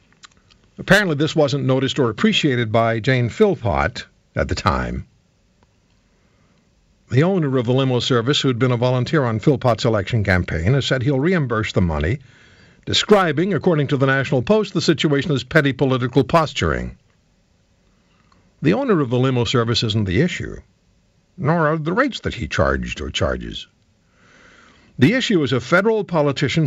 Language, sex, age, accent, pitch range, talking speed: English, male, 60-79, American, 115-155 Hz, 155 wpm